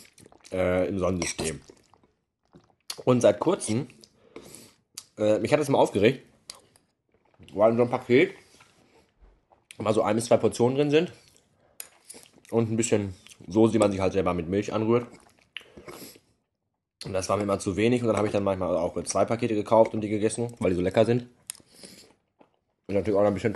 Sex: male